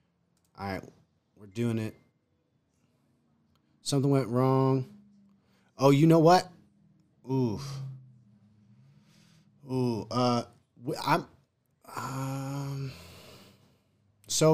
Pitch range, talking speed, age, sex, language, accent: 110-145 Hz, 75 wpm, 30-49, male, English, American